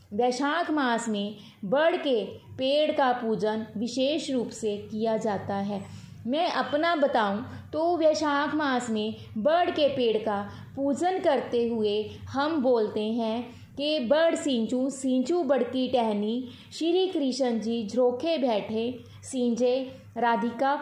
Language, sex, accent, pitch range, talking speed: Hindi, female, native, 220-285 Hz, 125 wpm